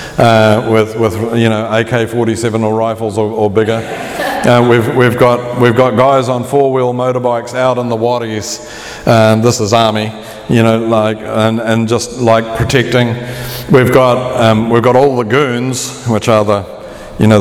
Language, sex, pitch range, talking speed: English, male, 105-120 Hz, 175 wpm